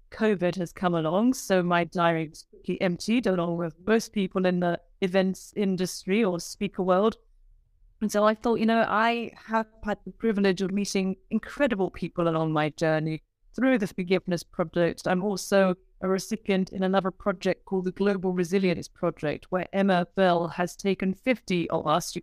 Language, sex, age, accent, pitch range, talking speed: English, female, 30-49, British, 175-210 Hz, 175 wpm